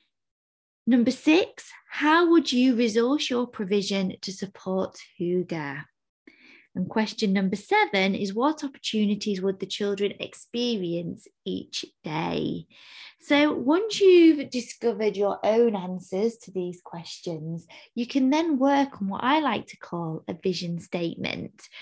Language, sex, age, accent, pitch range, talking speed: English, female, 20-39, British, 185-255 Hz, 130 wpm